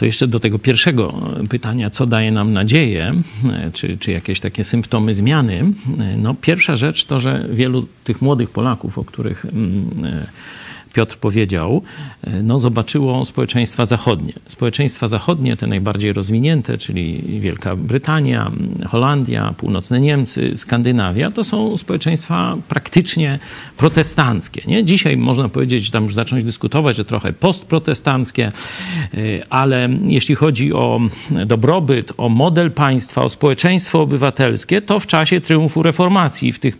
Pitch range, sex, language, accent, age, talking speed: 115-160 Hz, male, Polish, native, 50-69, 130 wpm